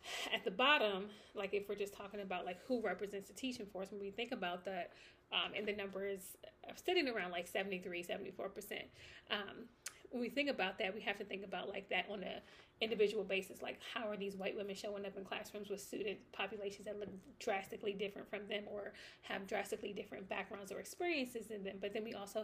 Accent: American